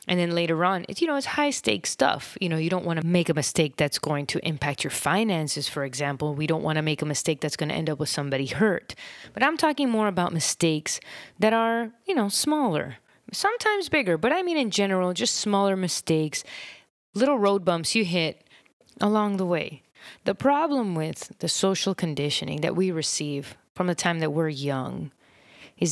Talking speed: 205 wpm